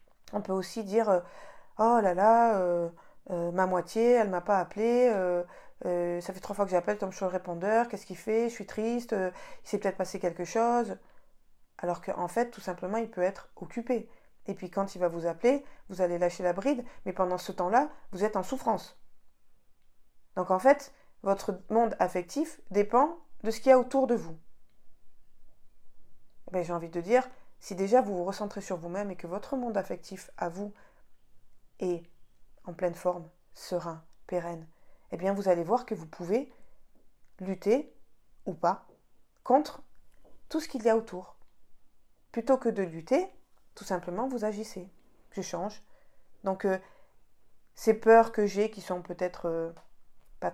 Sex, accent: female, French